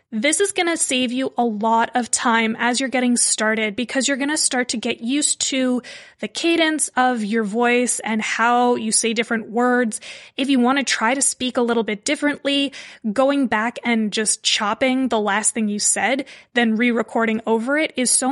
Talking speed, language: 200 wpm, English